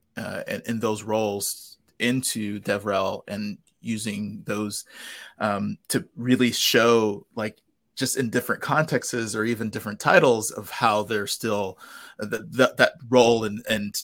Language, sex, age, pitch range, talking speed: English, male, 30-49, 110-125 Hz, 145 wpm